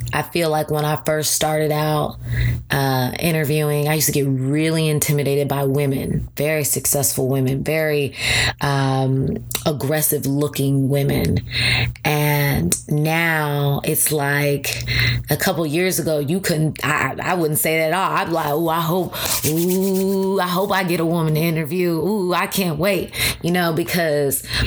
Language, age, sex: English, 20-39, female